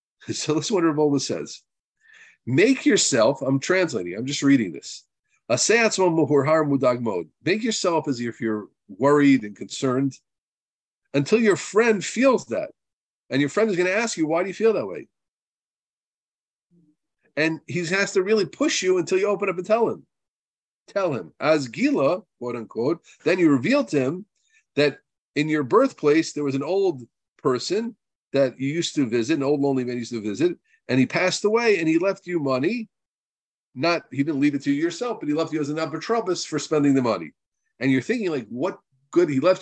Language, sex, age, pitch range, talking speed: English, male, 50-69, 135-205 Hz, 190 wpm